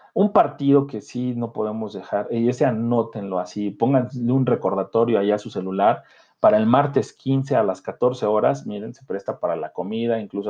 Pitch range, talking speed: 110-140 Hz, 190 wpm